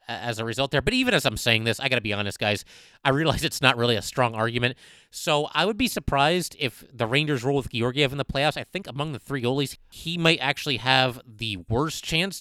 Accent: American